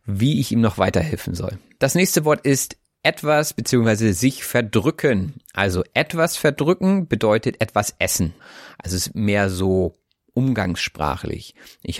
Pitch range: 95-130 Hz